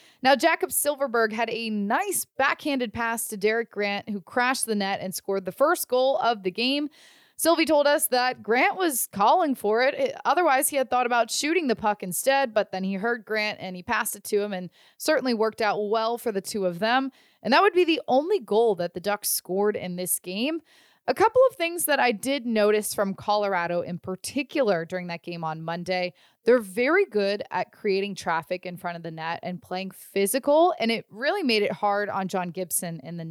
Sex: female